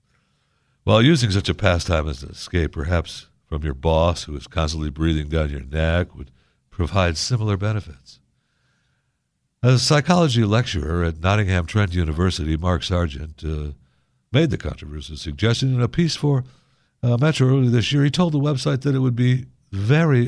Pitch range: 85-130 Hz